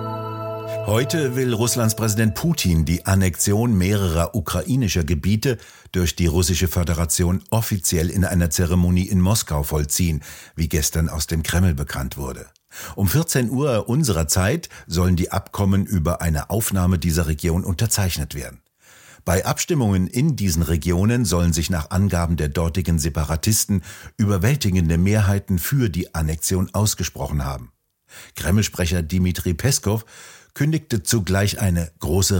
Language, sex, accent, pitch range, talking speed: German, male, German, 85-110 Hz, 130 wpm